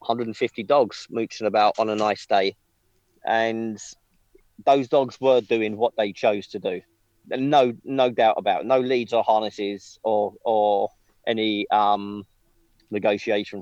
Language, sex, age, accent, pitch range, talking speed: English, male, 40-59, British, 105-130 Hz, 140 wpm